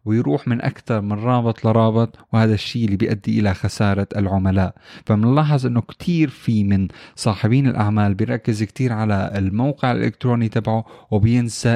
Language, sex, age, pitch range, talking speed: Arabic, male, 30-49, 100-125 Hz, 140 wpm